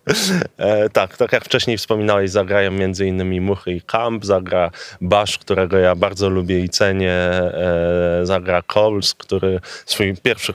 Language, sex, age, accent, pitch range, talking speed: Polish, male, 20-39, native, 95-105 Hz, 140 wpm